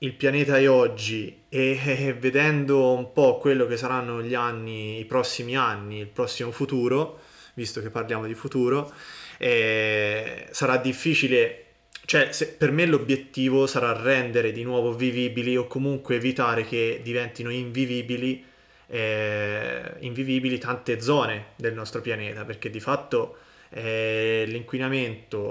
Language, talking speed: Italian, 130 wpm